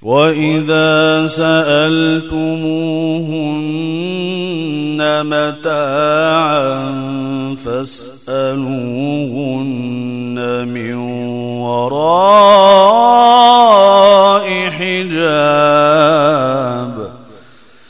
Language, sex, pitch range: Arabic, male, 135-185 Hz